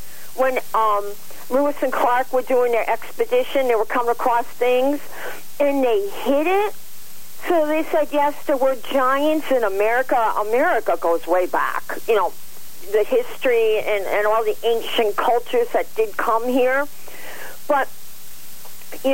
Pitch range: 240-320 Hz